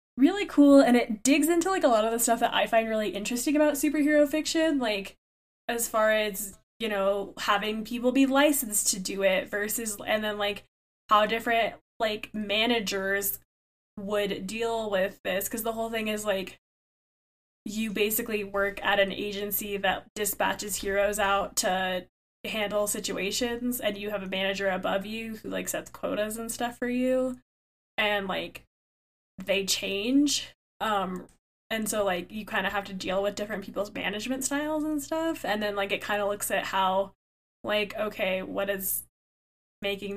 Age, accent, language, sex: 10-29, American, English, female